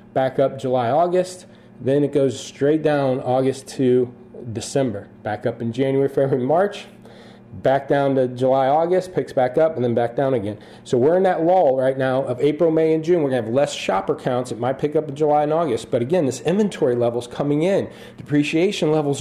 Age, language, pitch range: 40-59, English, 130-160 Hz